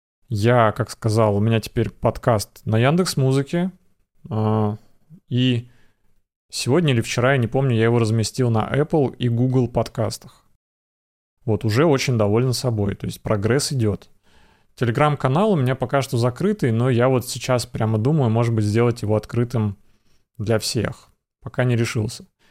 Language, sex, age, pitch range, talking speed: Russian, male, 20-39, 110-135 Hz, 150 wpm